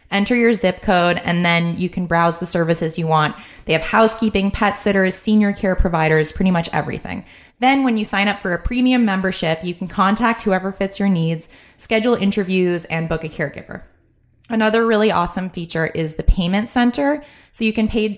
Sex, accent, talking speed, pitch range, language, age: female, American, 190 wpm, 165-205 Hz, English, 20-39